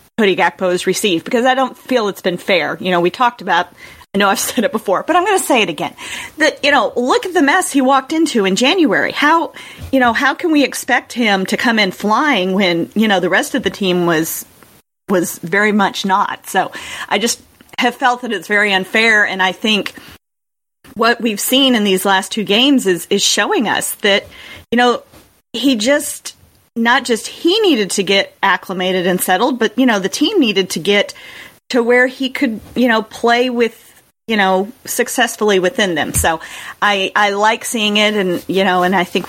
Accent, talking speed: American, 210 wpm